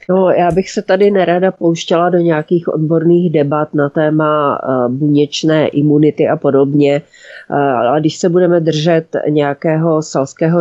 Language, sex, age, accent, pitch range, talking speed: Czech, female, 30-49, native, 150-170 Hz, 130 wpm